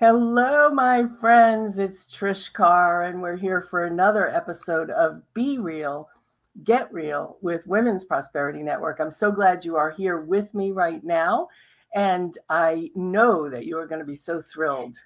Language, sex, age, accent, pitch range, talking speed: English, female, 50-69, American, 160-235 Hz, 165 wpm